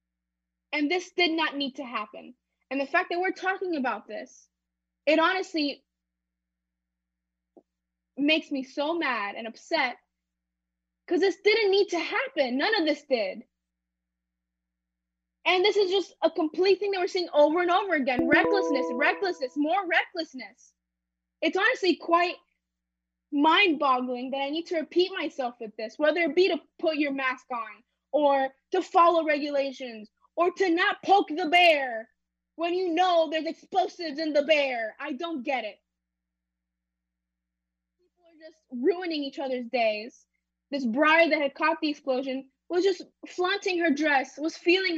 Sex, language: female, English